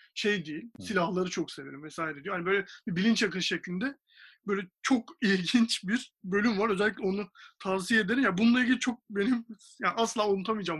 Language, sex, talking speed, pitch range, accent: Turkish, male, 180 wpm, 180-225 Hz, native